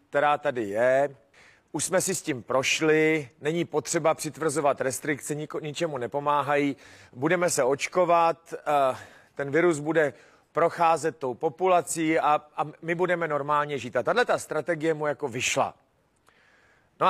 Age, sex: 40-59, male